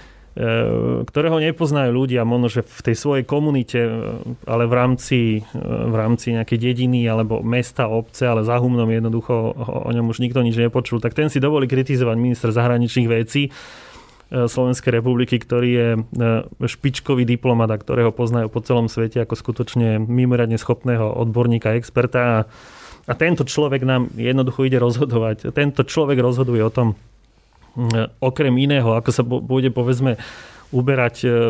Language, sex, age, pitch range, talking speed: Slovak, male, 30-49, 115-130 Hz, 135 wpm